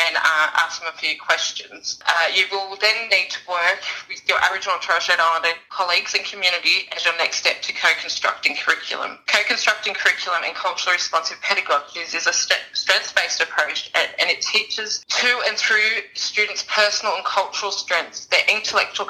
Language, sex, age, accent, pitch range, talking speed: English, female, 20-39, Australian, 165-200 Hz, 175 wpm